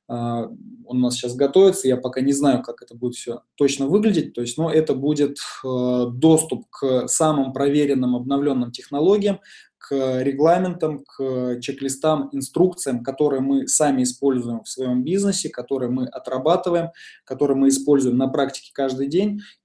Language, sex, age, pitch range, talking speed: Russian, male, 20-39, 125-155 Hz, 145 wpm